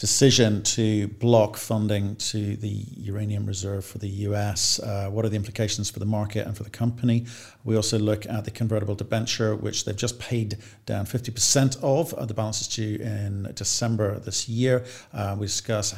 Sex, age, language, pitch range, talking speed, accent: male, 50-69, English, 105-120 Hz, 180 wpm, British